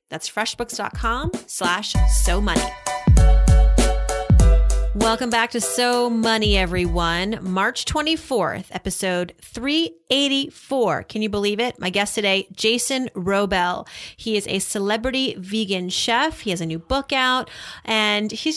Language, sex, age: English, female, 30-49